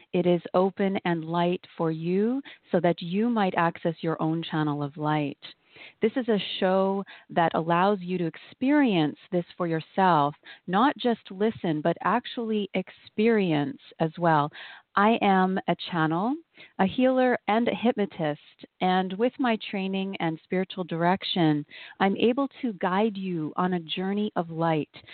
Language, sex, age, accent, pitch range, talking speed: English, female, 40-59, American, 170-220 Hz, 150 wpm